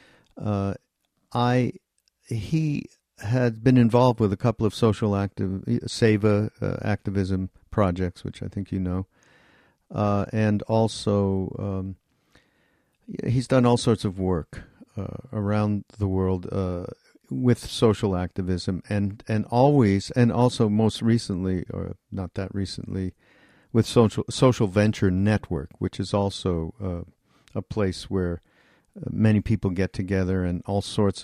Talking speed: 135 wpm